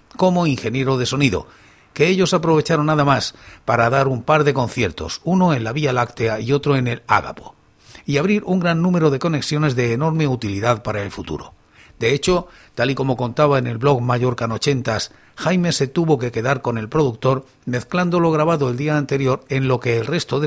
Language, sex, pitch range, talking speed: Spanish, male, 120-150 Hz, 200 wpm